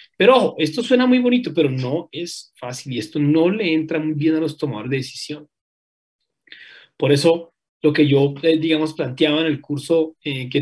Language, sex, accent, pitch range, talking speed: Spanish, male, Colombian, 140-170 Hz, 190 wpm